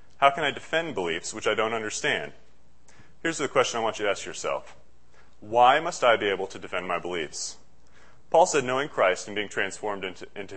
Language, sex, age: English, male, 30-49